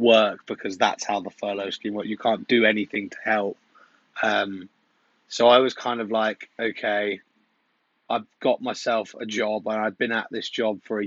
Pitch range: 100-115 Hz